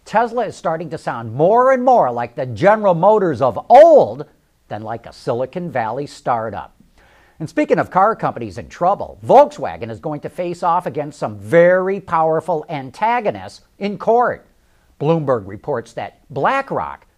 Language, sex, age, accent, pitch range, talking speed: English, male, 50-69, American, 145-205 Hz, 155 wpm